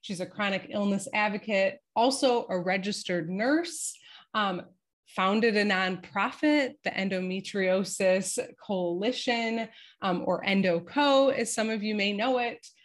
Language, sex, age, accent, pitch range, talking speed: English, female, 20-39, American, 185-240 Hz, 120 wpm